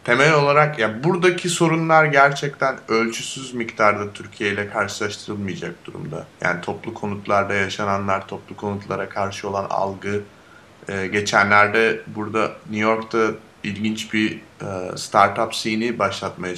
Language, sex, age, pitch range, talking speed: Turkish, male, 30-49, 95-110 Hz, 120 wpm